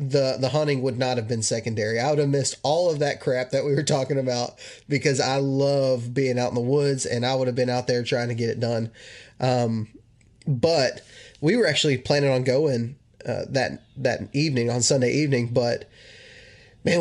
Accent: American